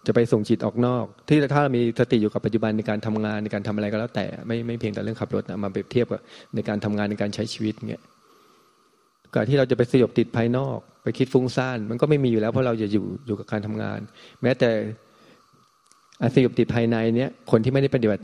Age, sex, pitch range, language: 20-39, male, 110-125 Hz, Thai